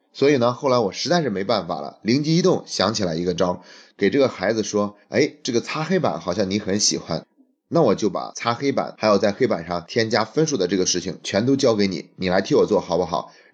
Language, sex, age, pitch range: Chinese, male, 20-39, 95-120 Hz